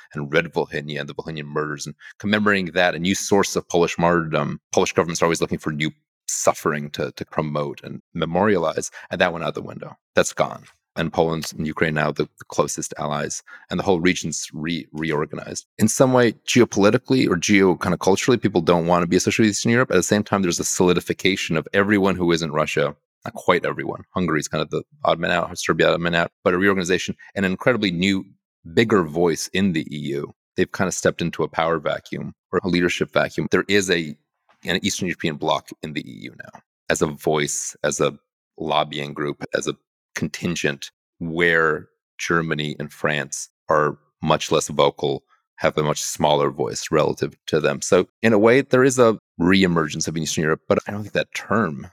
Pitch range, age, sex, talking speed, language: 75-100 Hz, 30-49, male, 200 wpm, English